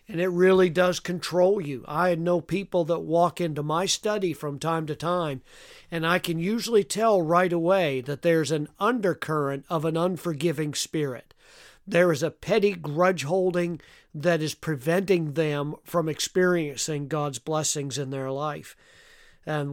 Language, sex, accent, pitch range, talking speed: English, male, American, 150-180 Hz, 155 wpm